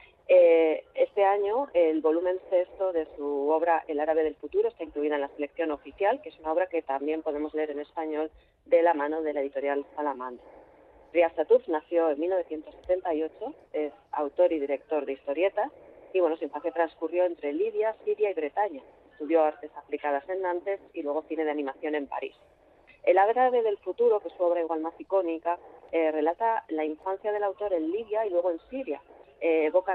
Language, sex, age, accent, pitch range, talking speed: Spanish, female, 30-49, Spanish, 155-185 Hz, 185 wpm